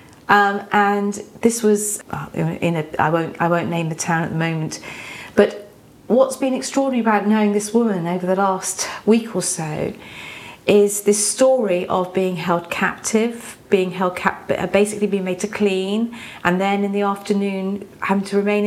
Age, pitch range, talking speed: 40-59, 195-230 Hz, 175 wpm